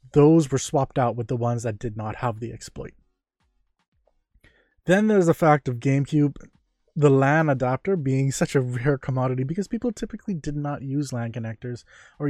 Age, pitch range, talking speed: 20-39, 120-145 Hz, 175 wpm